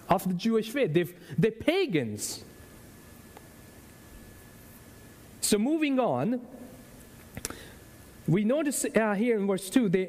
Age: 40-59